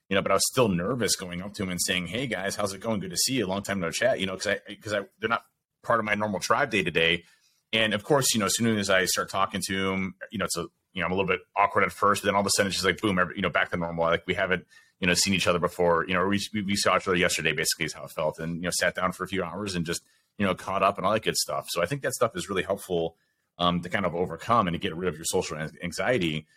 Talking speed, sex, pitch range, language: 335 wpm, male, 85-105 Hz, English